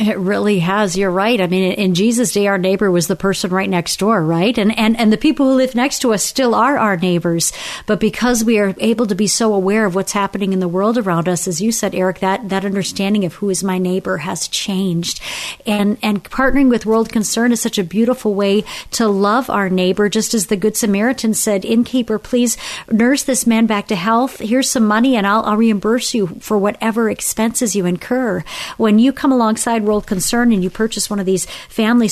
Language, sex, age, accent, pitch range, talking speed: English, female, 50-69, American, 195-235 Hz, 225 wpm